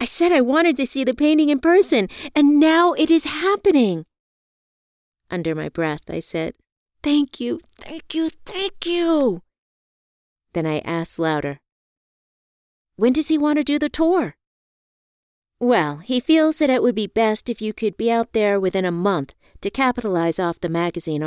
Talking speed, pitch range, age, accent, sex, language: 170 wpm, 165-260 Hz, 50-69, American, female, English